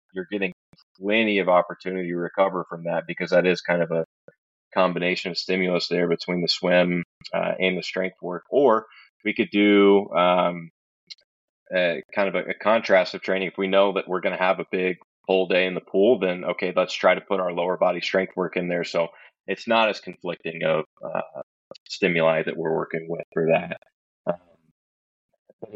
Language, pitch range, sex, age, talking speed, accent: English, 85-95 Hz, male, 20-39, 200 wpm, American